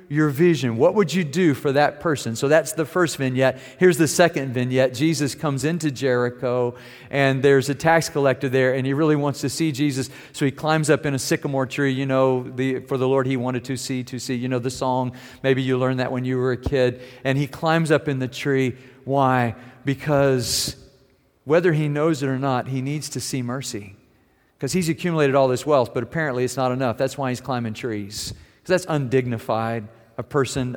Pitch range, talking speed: 125-140 Hz, 210 wpm